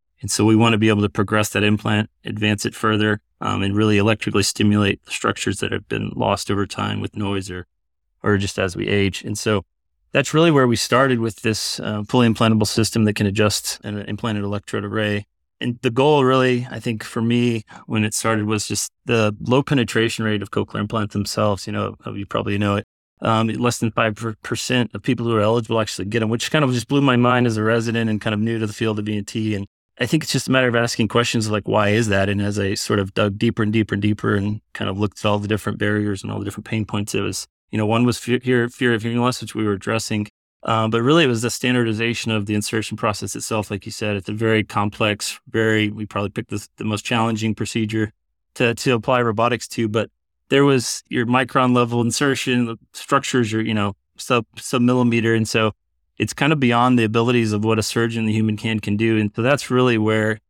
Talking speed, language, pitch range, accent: 235 wpm, English, 105-115 Hz, American